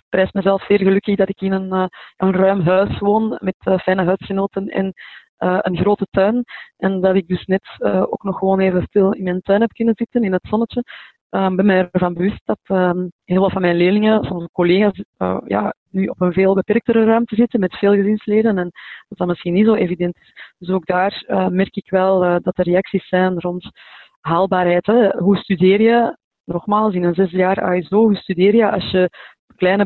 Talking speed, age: 195 wpm, 20-39